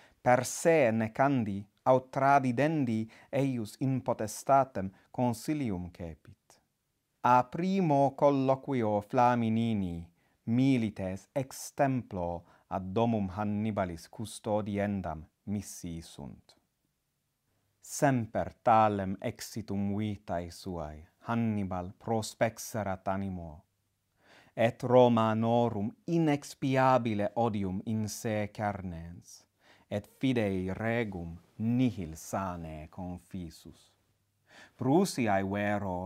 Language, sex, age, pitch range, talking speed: English, male, 30-49, 95-125 Hz, 75 wpm